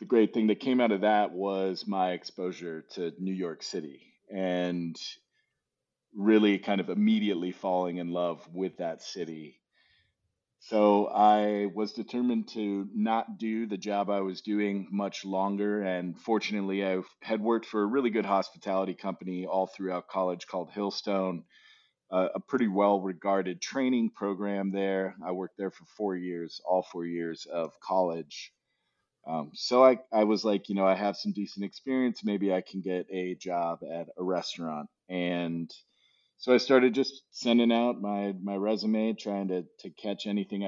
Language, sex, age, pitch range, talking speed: English, male, 40-59, 90-105 Hz, 160 wpm